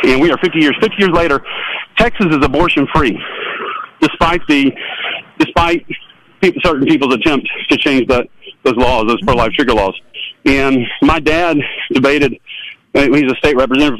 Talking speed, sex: 155 wpm, male